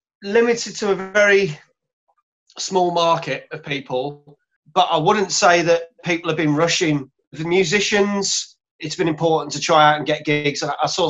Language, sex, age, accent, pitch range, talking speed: English, male, 30-49, British, 145-170 Hz, 160 wpm